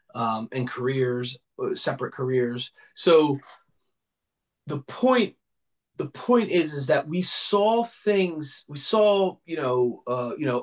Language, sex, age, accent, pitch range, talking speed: English, male, 30-49, American, 130-180 Hz, 130 wpm